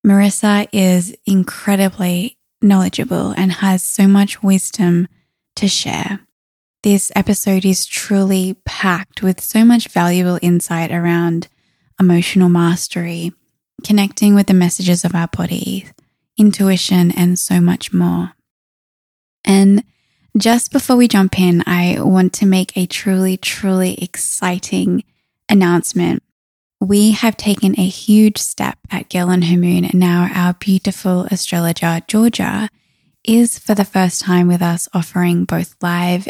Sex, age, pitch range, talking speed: female, 20-39, 175-200 Hz, 130 wpm